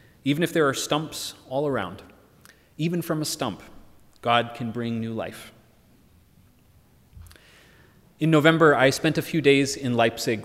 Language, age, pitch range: English, 30-49, 110-150 Hz